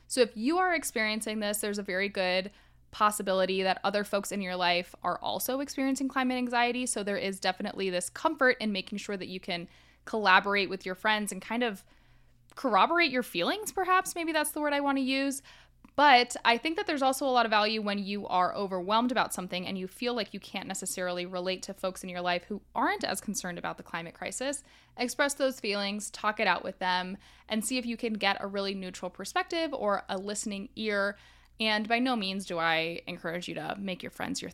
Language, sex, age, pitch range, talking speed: English, female, 10-29, 190-250 Hz, 215 wpm